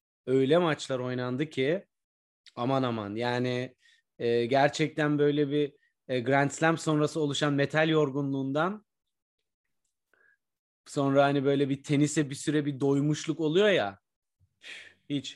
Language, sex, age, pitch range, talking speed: Turkish, male, 30-49, 130-155 Hz, 115 wpm